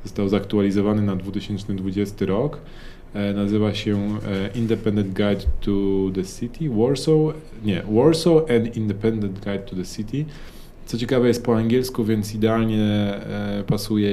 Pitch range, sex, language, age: 95-120 Hz, male, Polish, 20-39